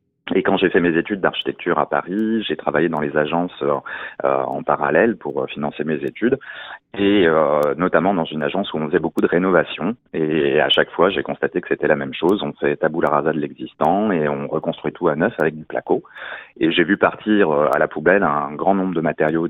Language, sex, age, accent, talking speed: French, male, 30-49, French, 225 wpm